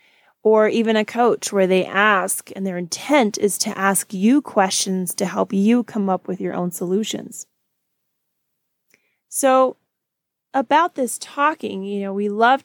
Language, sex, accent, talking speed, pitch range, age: English, female, American, 150 wpm, 200-250 Hz, 30-49